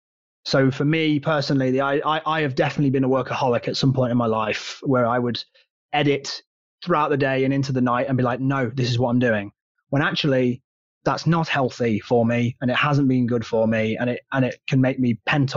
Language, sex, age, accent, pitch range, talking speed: English, male, 20-39, British, 120-150 Hz, 225 wpm